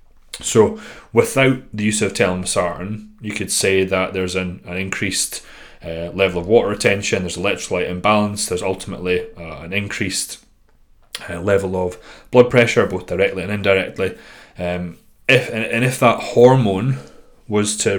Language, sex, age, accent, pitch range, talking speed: English, male, 30-49, British, 90-105 Hz, 155 wpm